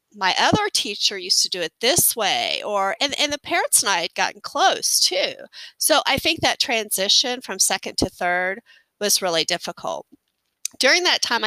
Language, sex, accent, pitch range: English, female, American, 185-245 Hz